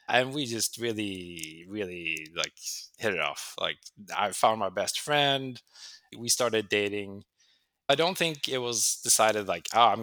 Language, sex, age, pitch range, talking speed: English, male, 20-39, 105-130 Hz, 160 wpm